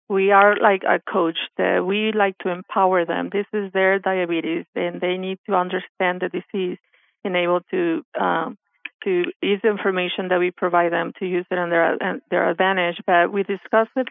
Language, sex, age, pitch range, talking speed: English, female, 40-59, 180-205 Hz, 185 wpm